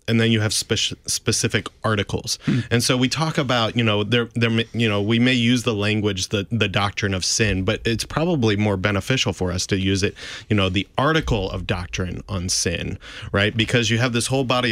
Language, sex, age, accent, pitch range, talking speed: English, male, 30-49, American, 95-120 Hz, 215 wpm